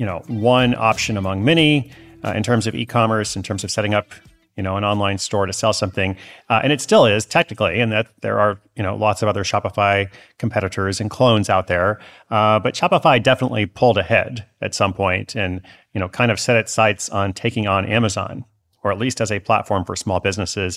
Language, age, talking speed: English, 30-49, 215 wpm